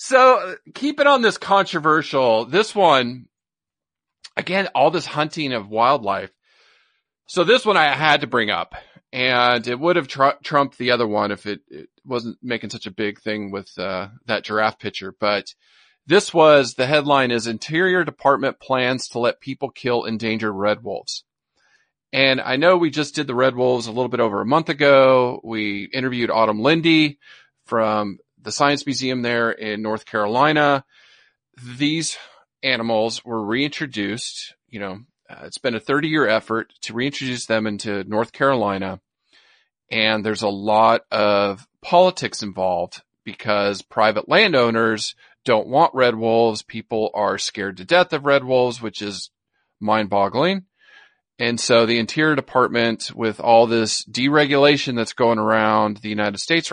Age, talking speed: 40-59, 155 wpm